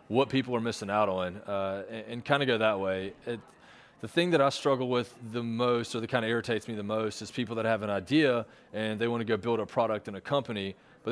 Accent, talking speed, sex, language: American, 255 wpm, male, English